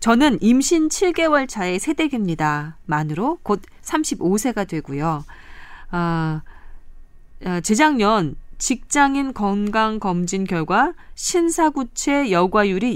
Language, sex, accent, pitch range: Korean, female, native, 175-270 Hz